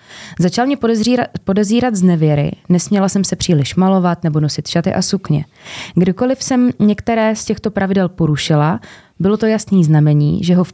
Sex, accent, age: female, native, 20-39